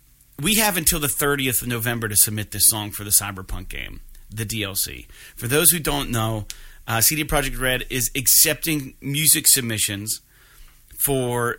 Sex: male